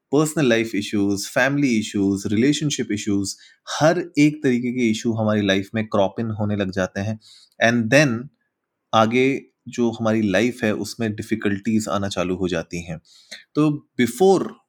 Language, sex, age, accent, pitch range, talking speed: Hindi, male, 20-39, native, 105-135 Hz, 150 wpm